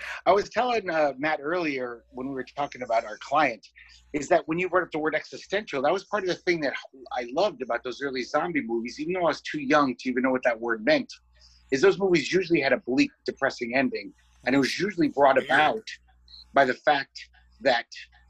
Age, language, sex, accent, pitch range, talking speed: 30-49, English, male, American, 115-175 Hz, 225 wpm